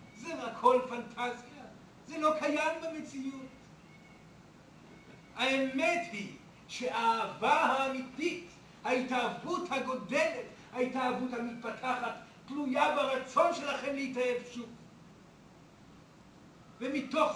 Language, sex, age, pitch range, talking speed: Hebrew, male, 50-69, 250-305 Hz, 75 wpm